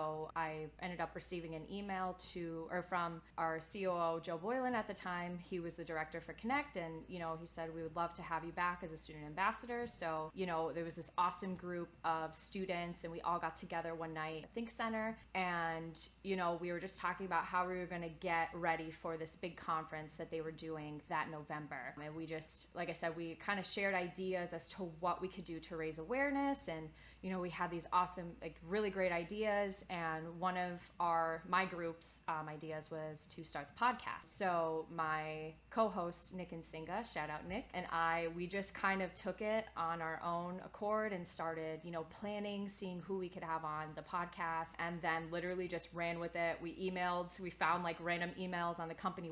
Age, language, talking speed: 20-39, English, 220 wpm